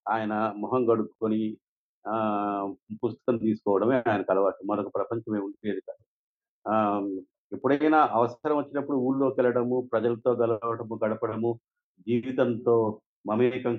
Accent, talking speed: native, 90 wpm